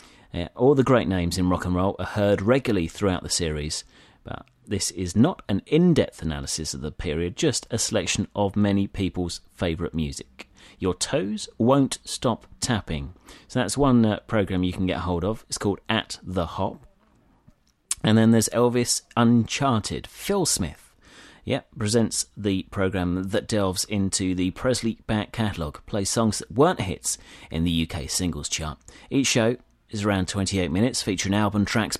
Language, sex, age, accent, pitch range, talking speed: English, male, 30-49, British, 85-110 Hz, 170 wpm